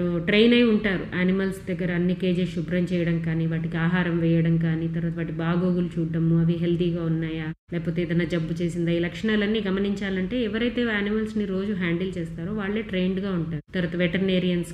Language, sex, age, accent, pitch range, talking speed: Telugu, female, 30-49, native, 170-200 Hz, 160 wpm